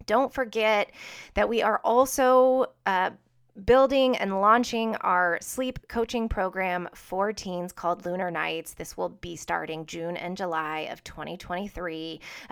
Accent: American